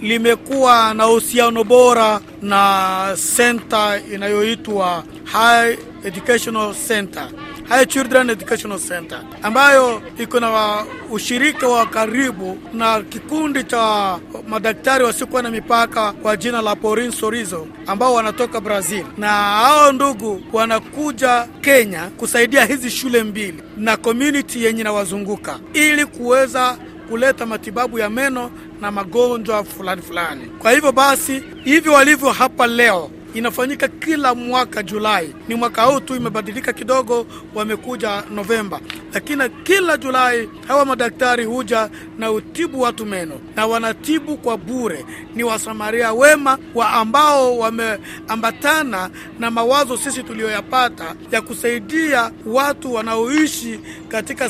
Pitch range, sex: 215-255 Hz, male